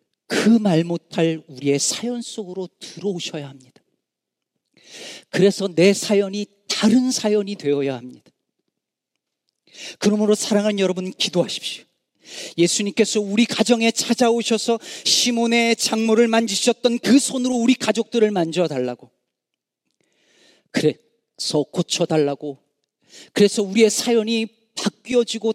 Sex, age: male, 40-59